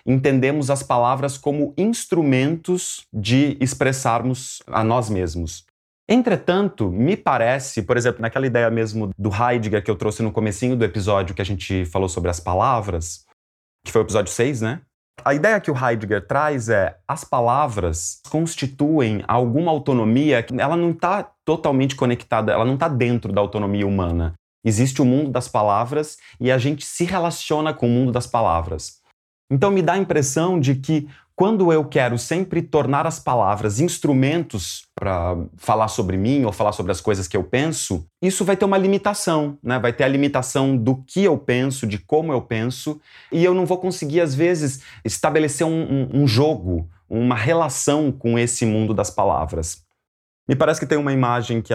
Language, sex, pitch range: Portuguese, male, 110-150 Hz